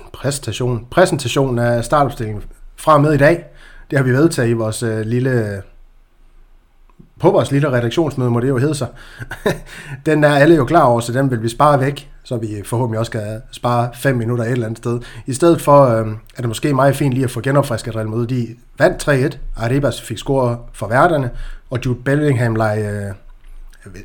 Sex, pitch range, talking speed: male, 115-140 Hz, 195 wpm